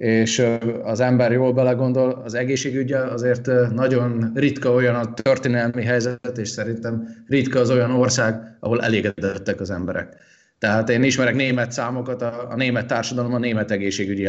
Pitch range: 110-130 Hz